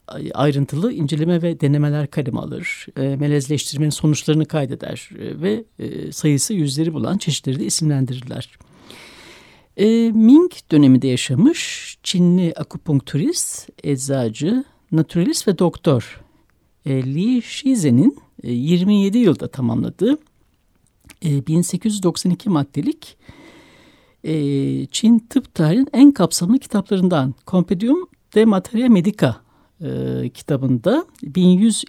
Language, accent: Turkish, native